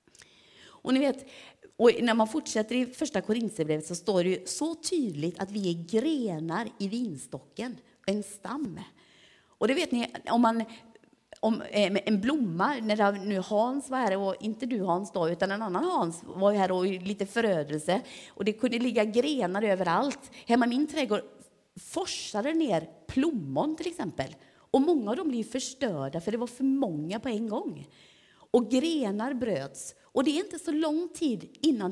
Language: Swedish